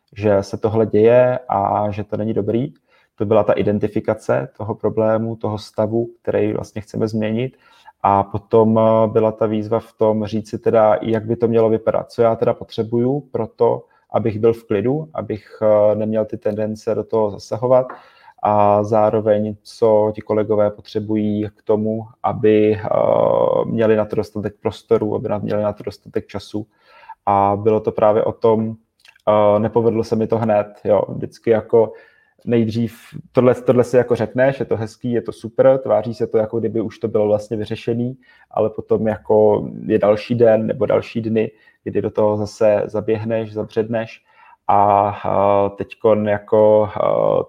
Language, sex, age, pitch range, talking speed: Czech, male, 20-39, 105-115 Hz, 160 wpm